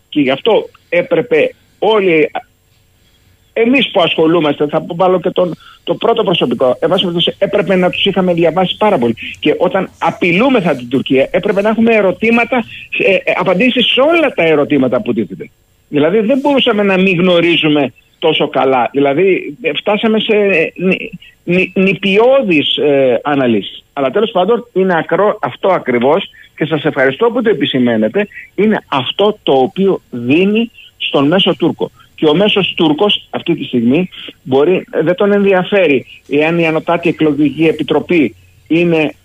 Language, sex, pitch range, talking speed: Greek, male, 150-205 Hz, 145 wpm